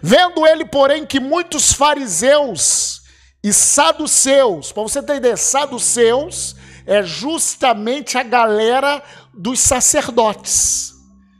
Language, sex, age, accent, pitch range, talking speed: Portuguese, male, 50-69, Brazilian, 215-295 Hz, 95 wpm